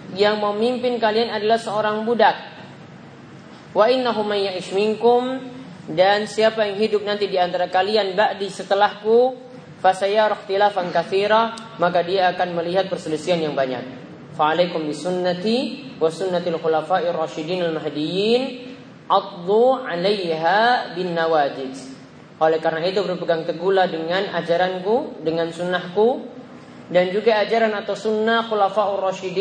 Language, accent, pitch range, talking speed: Indonesian, native, 175-220 Hz, 75 wpm